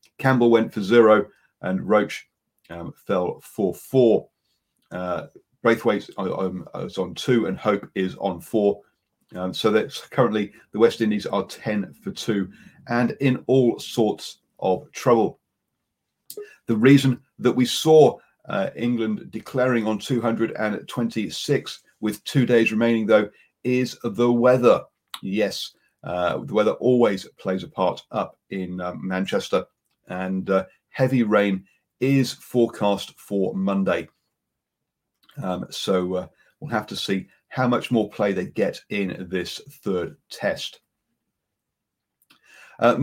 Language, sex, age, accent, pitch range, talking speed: English, male, 40-59, British, 100-130 Hz, 130 wpm